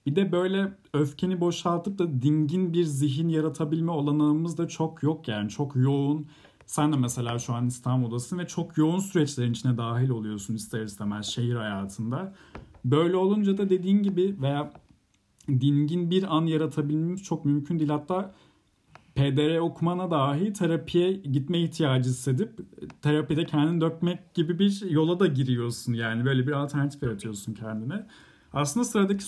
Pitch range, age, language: 130-175 Hz, 40-59, Turkish